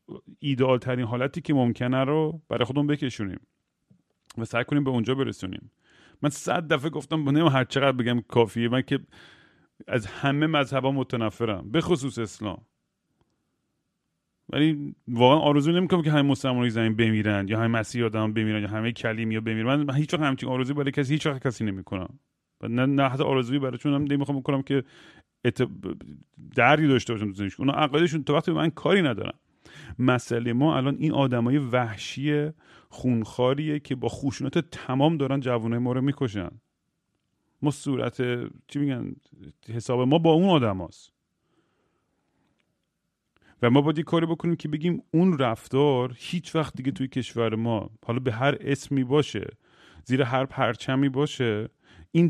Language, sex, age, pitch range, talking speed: Persian, male, 40-59, 115-145 Hz, 145 wpm